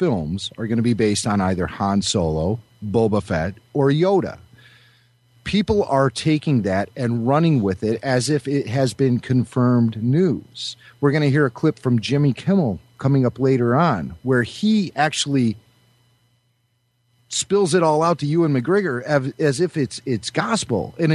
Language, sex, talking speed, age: English, male, 165 wpm, 40-59